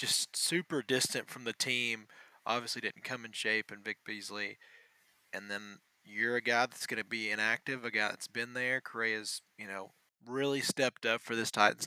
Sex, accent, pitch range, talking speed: male, American, 110-125 Hz, 190 wpm